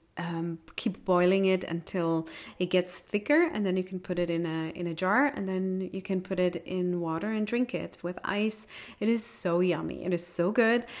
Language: English